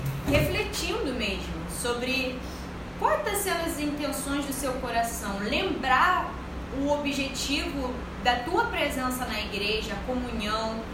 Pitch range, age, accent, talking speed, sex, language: 235-310 Hz, 10-29, Brazilian, 110 wpm, female, Portuguese